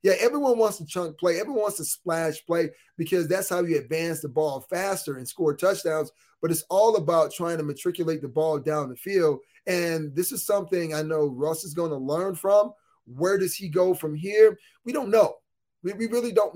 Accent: American